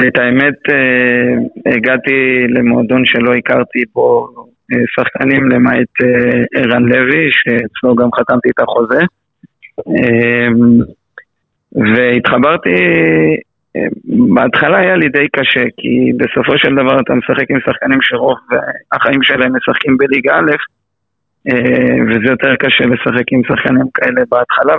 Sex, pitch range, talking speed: male, 120-135 Hz, 105 wpm